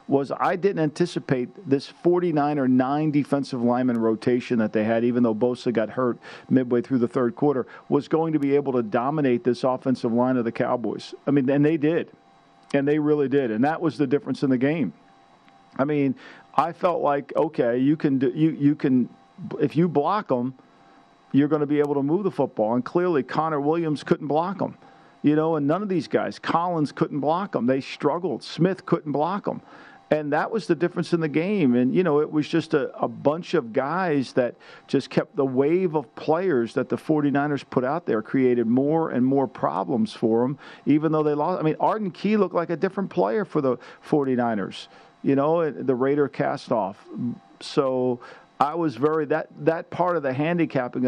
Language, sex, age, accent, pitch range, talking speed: English, male, 50-69, American, 130-165 Hz, 200 wpm